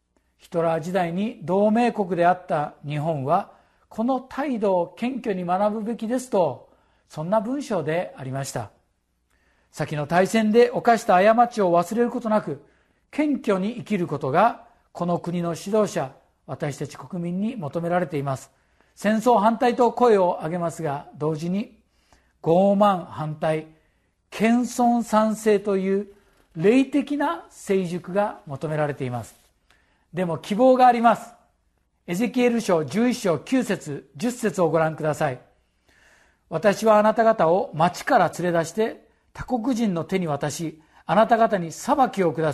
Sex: male